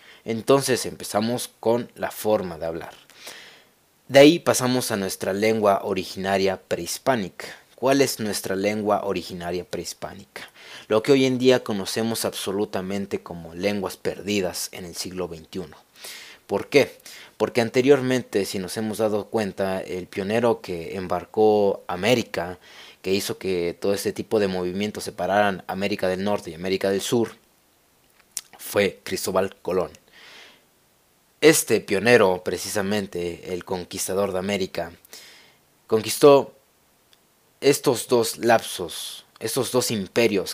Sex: male